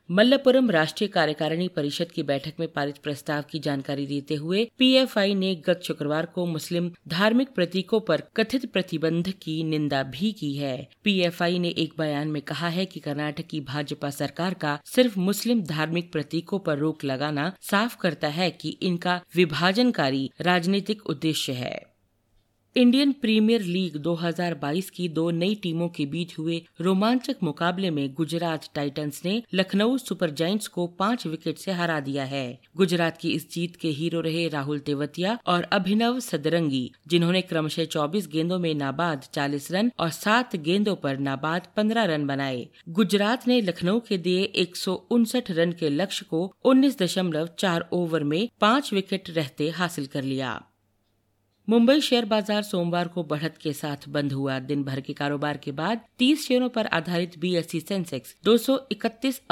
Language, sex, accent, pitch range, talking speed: Hindi, female, native, 150-200 Hz, 155 wpm